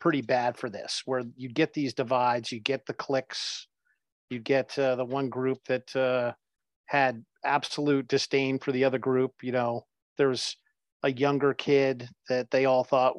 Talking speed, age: 180 wpm, 50-69